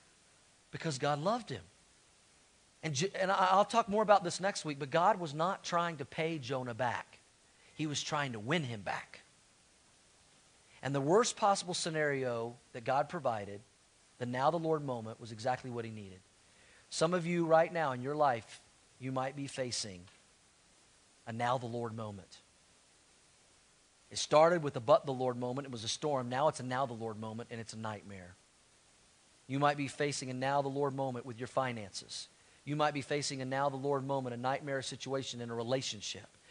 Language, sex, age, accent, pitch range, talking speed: English, male, 40-59, American, 120-155 Hz, 185 wpm